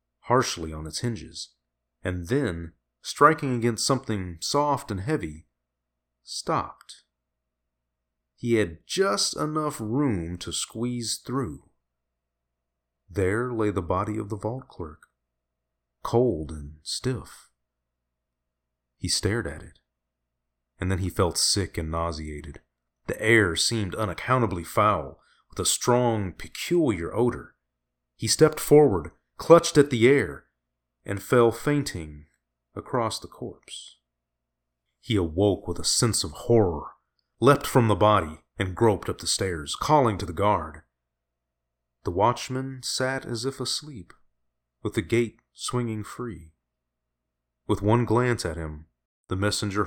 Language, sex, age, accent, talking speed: English, male, 30-49, American, 125 wpm